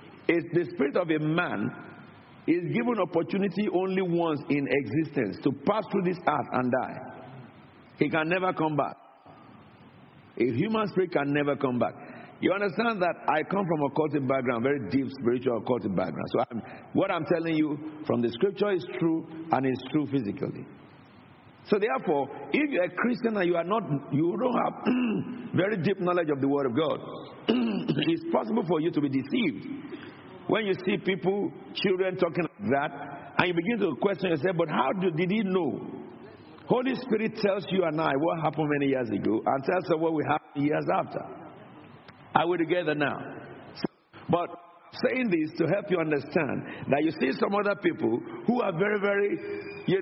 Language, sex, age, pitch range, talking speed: English, male, 50-69, 150-200 Hz, 180 wpm